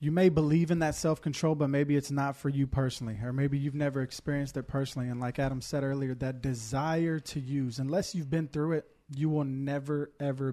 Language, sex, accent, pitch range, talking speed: English, male, American, 135-155 Hz, 215 wpm